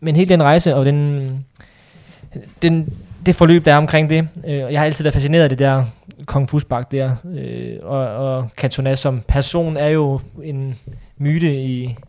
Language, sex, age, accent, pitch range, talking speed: Danish, male, 20-39, native, 125-145 Hz, 185 wpm